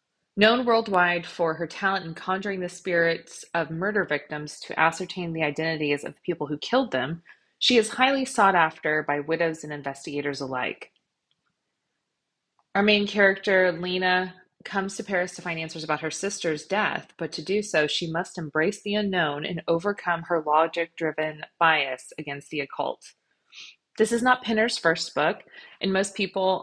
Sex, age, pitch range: female, 20-39, 160-200 Hz